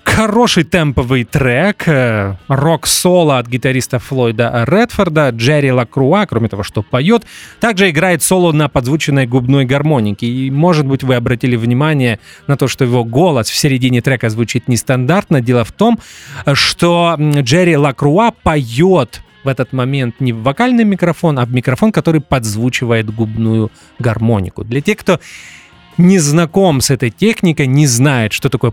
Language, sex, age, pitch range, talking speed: English, male, 30-49, 120-160 Hz, 150 wpm